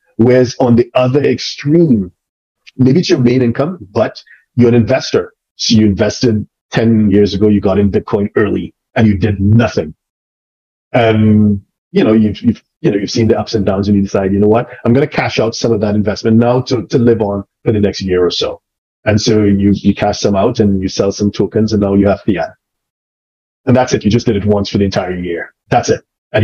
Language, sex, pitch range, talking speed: English, male, 100-115 Hz, 230 wpm